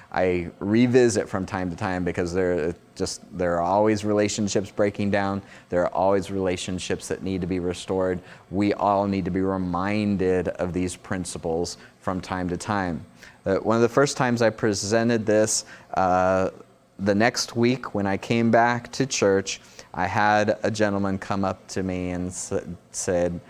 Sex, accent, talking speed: male, American, 165 wpm